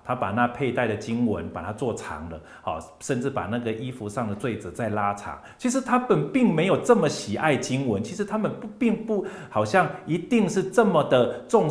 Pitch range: 105-170 Hz